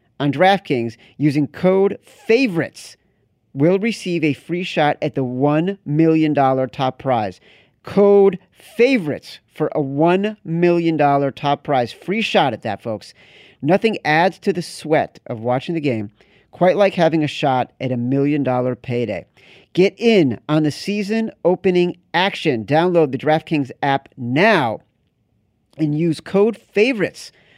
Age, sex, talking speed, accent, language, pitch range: 40-59, male, 135 wpm, American, English, 135-190 Hz